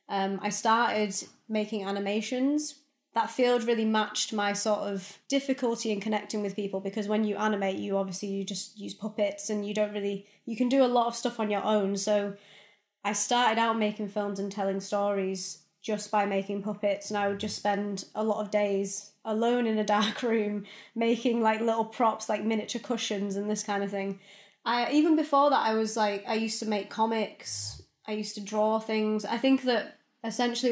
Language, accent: English, British